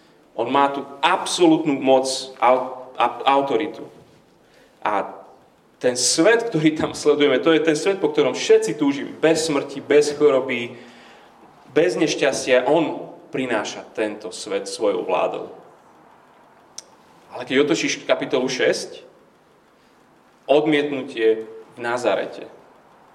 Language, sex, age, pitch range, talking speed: Slovak, male, 30-49, 145-205 Hz, 105 wpm